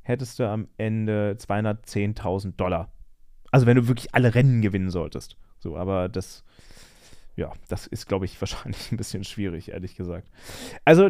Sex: male